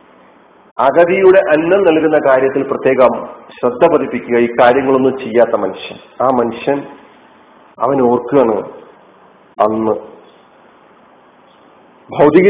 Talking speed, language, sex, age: 75 wpm, Malayalam, male, 40-59